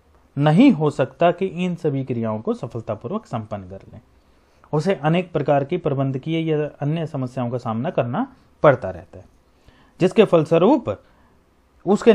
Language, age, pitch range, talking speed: Hindi, 30-49, 110-170 Hz, 145 wpm